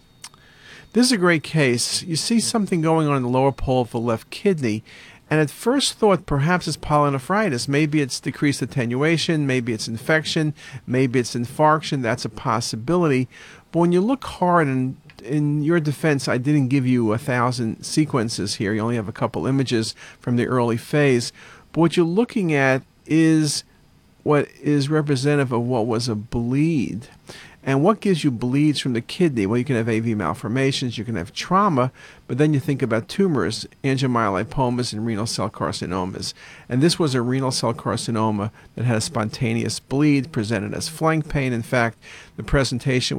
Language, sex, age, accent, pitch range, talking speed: English, male, 50-69, American, 115-150 Hz, 180 wpm